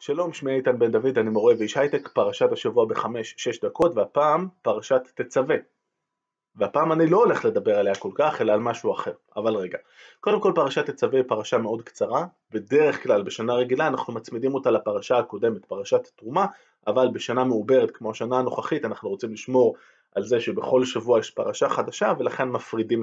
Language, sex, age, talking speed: Hebrew, male, 20-39, 175 wpm